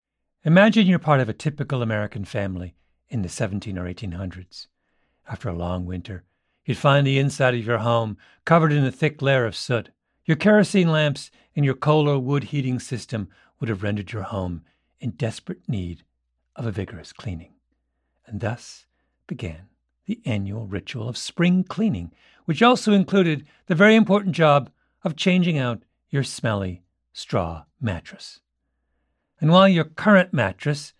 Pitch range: 100-165 Hz